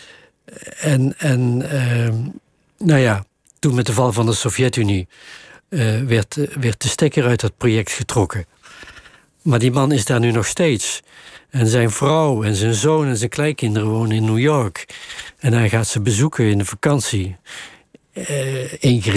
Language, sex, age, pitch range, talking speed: Dutch, male, 60-79, 115-145 Hz, 155 wpm